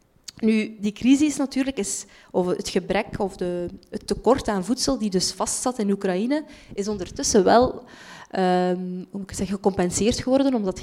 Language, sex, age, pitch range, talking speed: Dutch, female, 20-39, 195-230 Hz, 170 wpm